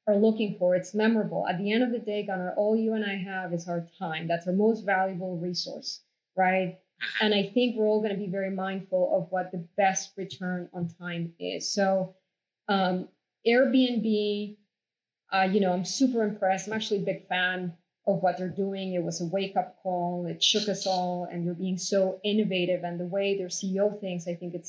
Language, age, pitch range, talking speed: English, 20-39, 185-215 Hz, 205 wpm